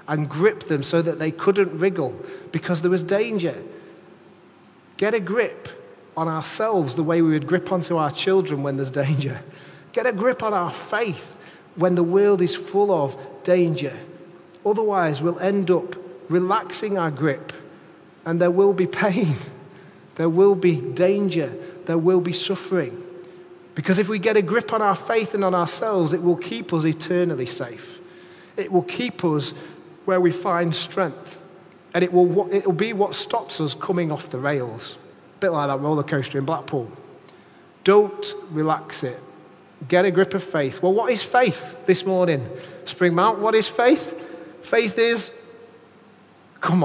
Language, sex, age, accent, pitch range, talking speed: English, male, 40-59, British, 165-200 Hz, 165 wpm